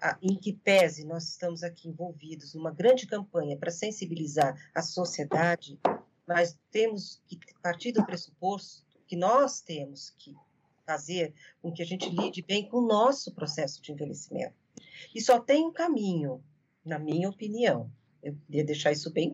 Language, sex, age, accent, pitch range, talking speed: Portuguese, female, 40-59, Brazilian, 165-215 Hz, 155 wpm